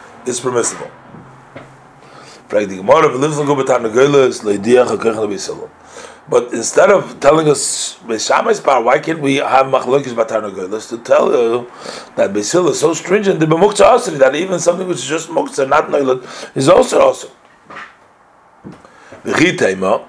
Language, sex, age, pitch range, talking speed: English, male, 40-59, 125-155 Hz, 80 wpm